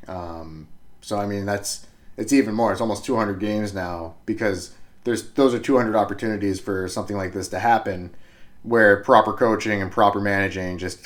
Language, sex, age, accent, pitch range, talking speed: English, male, 30-49, American, 100-120 Hz, 175 wpm